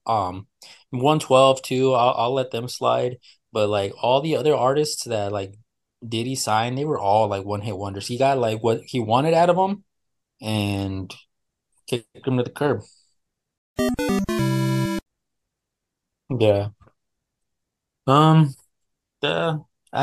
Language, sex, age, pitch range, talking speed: English, male, 20-39, 100-125 Hz, 135 wpm